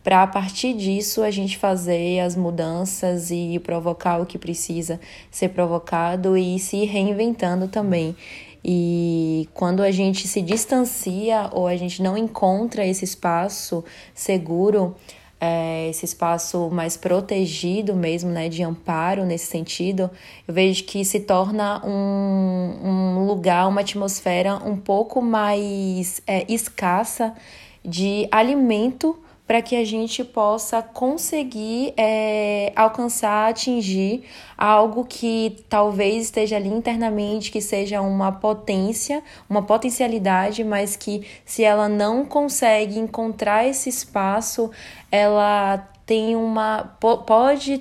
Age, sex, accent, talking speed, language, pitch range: 20-39, female, Brazilian, 115 wpm, Portuguese, 185-220 Hz